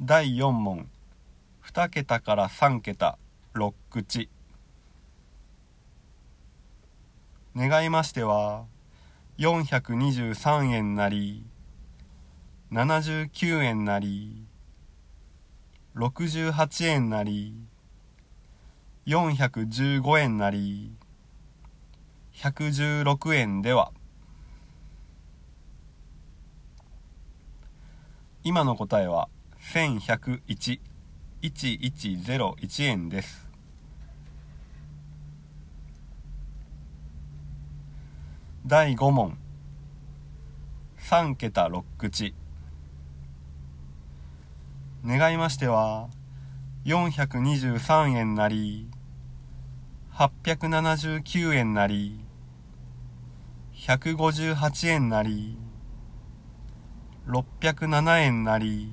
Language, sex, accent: Japanese, male, native